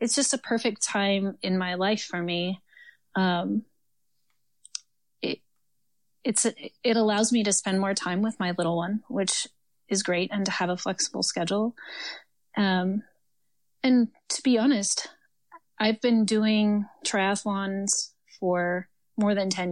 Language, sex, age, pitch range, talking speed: English, female, 30-49, 180-220 Hz, 140 wpm